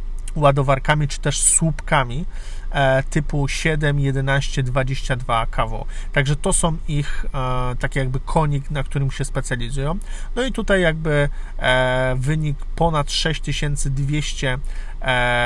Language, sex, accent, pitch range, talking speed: Polish, male, native, 130-155 Hz, 120 wpm